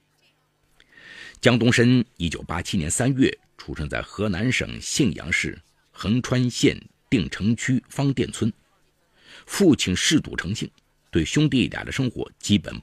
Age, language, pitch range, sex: 50-69, Chinese, 90-135 Hz, male